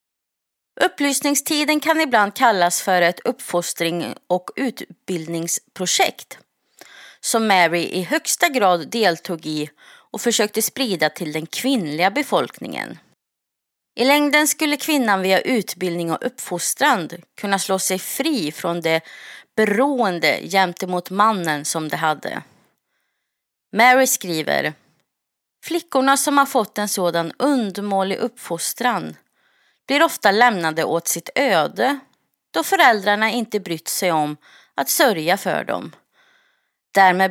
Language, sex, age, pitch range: Swedish, female, 30-49, 175-270 Hz